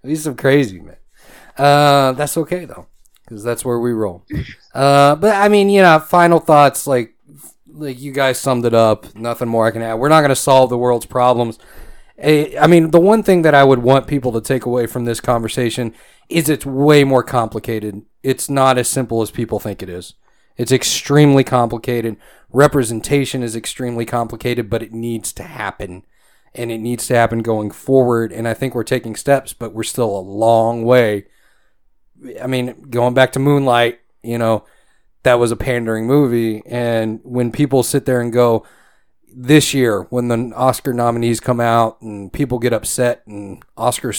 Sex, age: male, 30-49